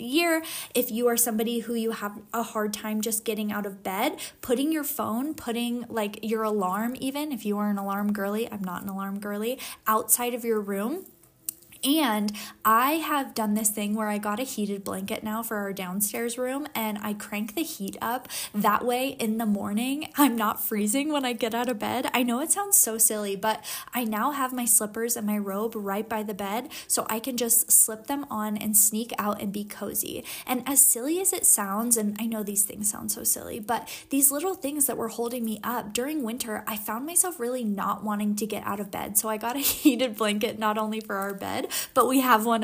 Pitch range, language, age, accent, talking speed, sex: 210-255 Hz, English, 10-29, American, 225 wpm, female